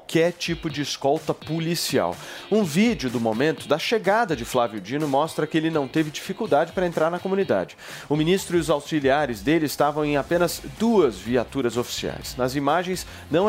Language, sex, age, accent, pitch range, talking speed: Portuguese, male, 30-49, Brazilian, 130-175 Hz, 180 wpm